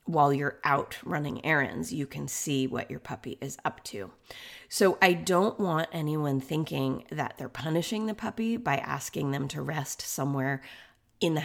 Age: 30-49